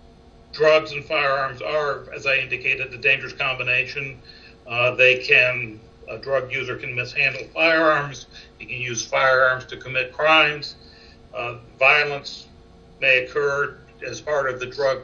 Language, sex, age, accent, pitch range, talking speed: English, male, 60-79, American, 120-145 Hz, 140 wpm